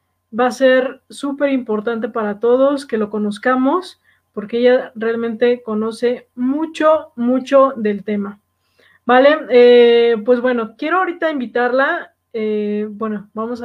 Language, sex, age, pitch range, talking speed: Spanish, female, 20-39, 225-280 Hz, 125 wpm